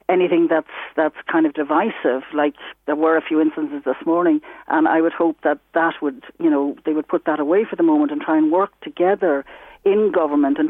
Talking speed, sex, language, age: 220 wpm, female, English, 60-79